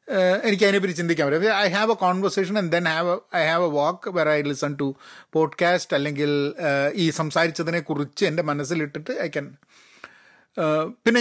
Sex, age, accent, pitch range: male, 30-49, native, 145-195 Hz